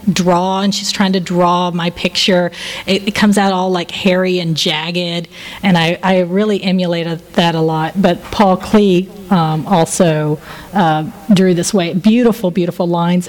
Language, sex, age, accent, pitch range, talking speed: English, female, 40-59, American, 175-225 Hz, 165 wpm